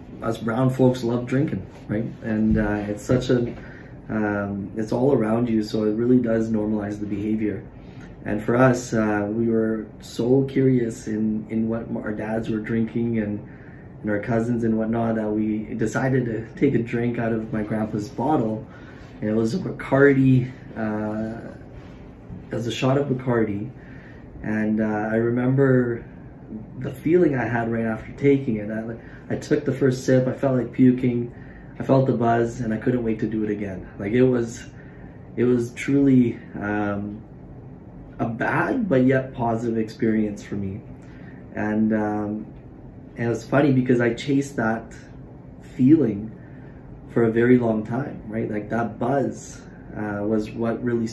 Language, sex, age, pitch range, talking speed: English, male, 20-39, 110-130 Hz, 165 wpm